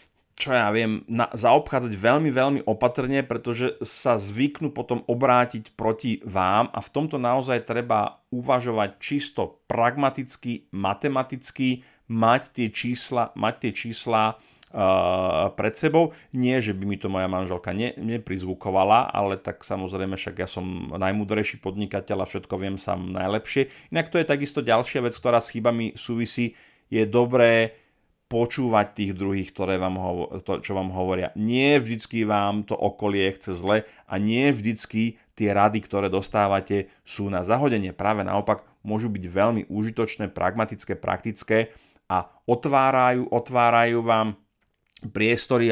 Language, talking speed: Slovak, 140 wpm